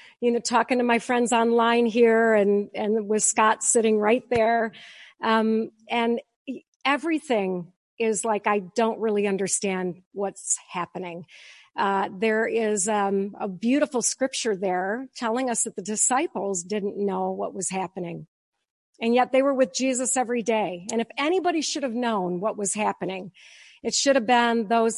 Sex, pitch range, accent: female, 210-255 Hz, American